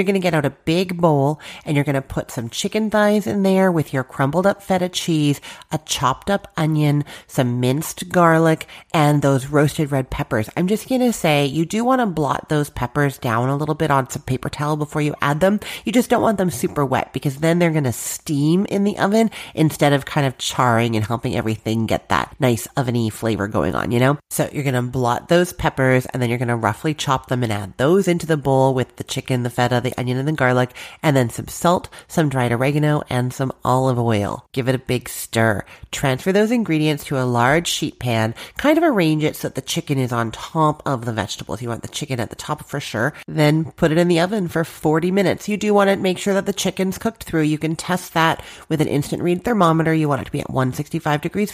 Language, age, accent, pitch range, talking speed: English, 30-49, American, 125-170 Hz, 240 wpm